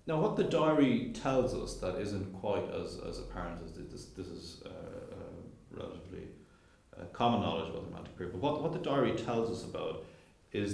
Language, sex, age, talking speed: English, male, 40-59, 195 wpm